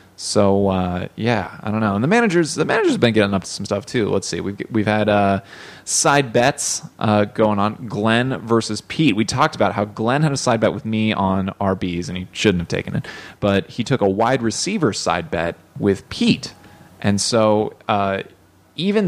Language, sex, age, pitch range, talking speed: English, male, 20-39, 95-125 Hz, 210 wpm